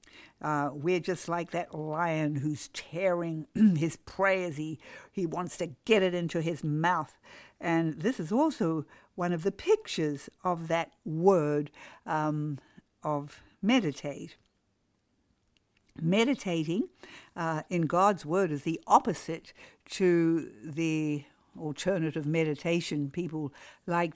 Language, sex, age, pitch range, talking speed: English, female, 60-79, 160-205 Hz, 120 wpm